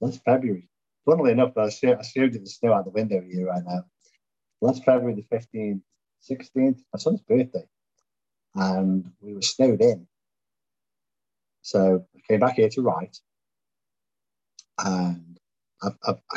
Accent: British